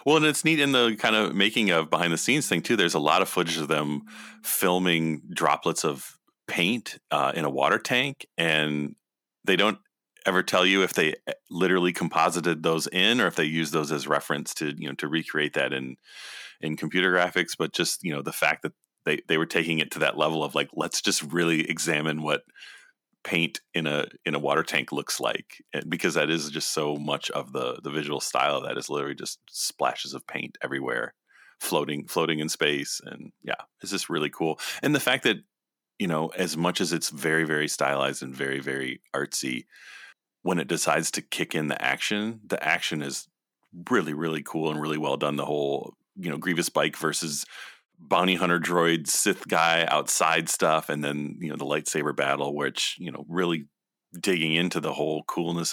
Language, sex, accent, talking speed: English, male, American, 200 wpm